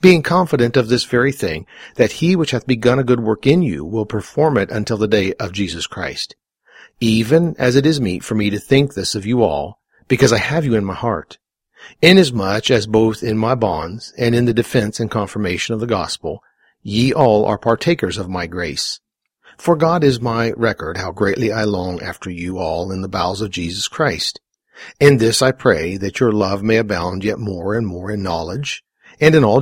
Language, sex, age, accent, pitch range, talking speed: English, male, 50-69, American, 100-135 Hz, 210 wpm